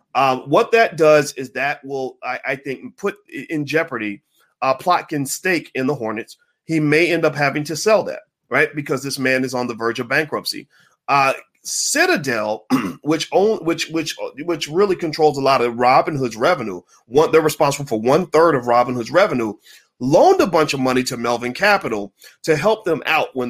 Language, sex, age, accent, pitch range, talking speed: English, male, 30-49, American, 125-165 Hz, 190 wpm